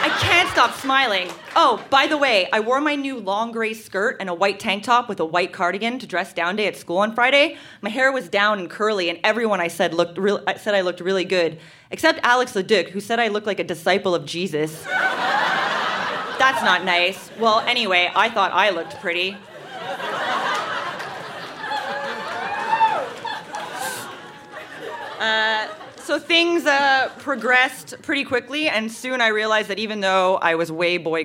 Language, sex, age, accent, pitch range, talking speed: English, female, 20-39, American, 175-255 Hz, 170 wpm